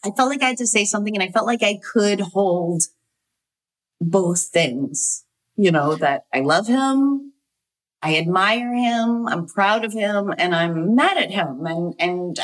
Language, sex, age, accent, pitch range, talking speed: English, female, 30-49, American, 165-225 Hz, 180 wpm